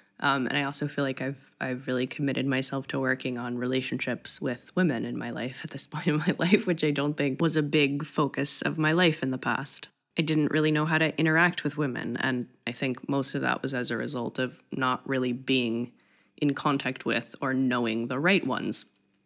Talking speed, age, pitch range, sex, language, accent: 220 wpm, 20-39, 130-160 Hz, female, English, American